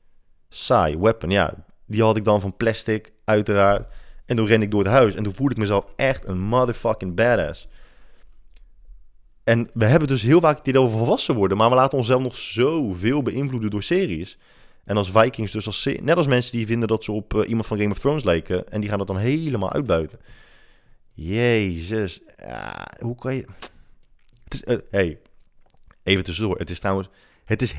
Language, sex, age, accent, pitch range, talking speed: Dutch, male, 20-39, Dutch, 95-125 Hz, 190 wpm